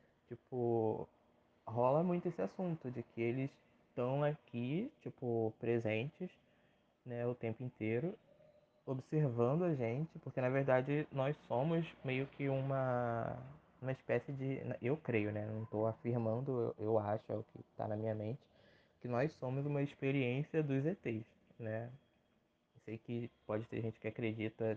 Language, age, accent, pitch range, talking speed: Portuguese, 20-39, Brazilian, 110-130 Hz, 150 wpm